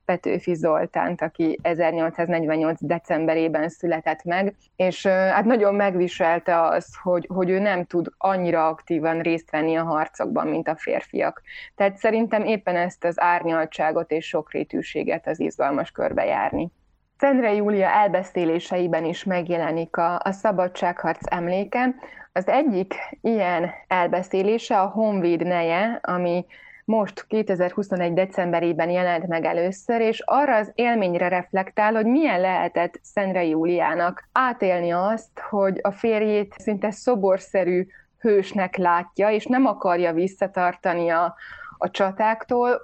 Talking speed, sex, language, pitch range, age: 120 wpm, female, Hungarian, 175-205 Hz, 20-39